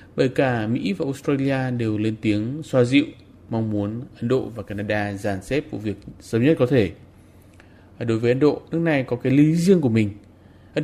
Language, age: Vietnamese, 20-39